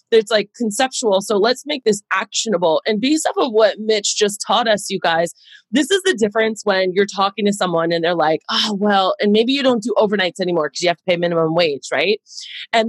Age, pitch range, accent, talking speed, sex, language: 30-49, 195-270 Hz, American, 230 wpm, female, English